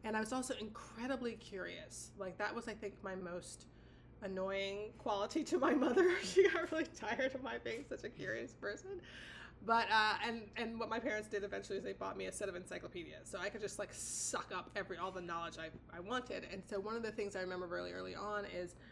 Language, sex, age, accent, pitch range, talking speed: English, female, 20-39, American, 180-220 Hz, 230 wpm